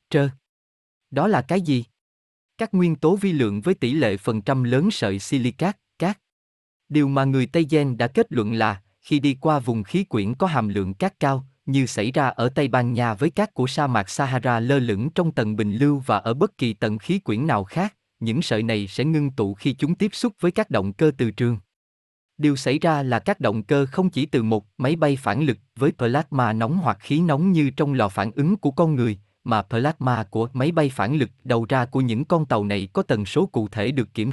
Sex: male